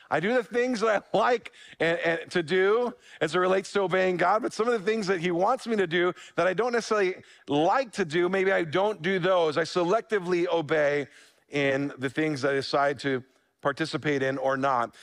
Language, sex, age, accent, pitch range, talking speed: English, male, 40-59, American, 160-210 Hz, 215 wpm